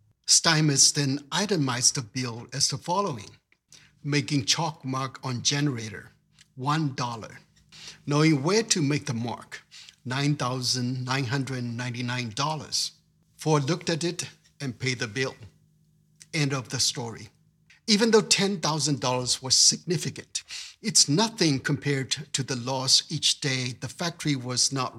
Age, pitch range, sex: 60-79, 125-160 Hz, male